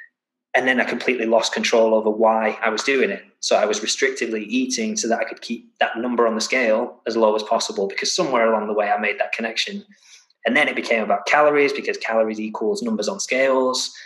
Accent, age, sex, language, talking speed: British, 20-39, male, English, 220 wpm